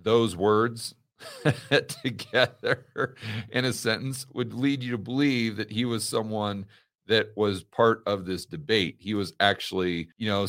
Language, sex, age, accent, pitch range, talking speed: English, male, 40-59, American, 95-110 Hz, 150 wpm